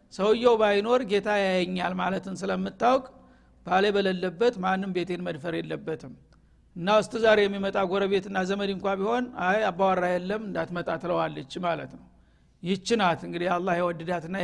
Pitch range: 175-210 Hz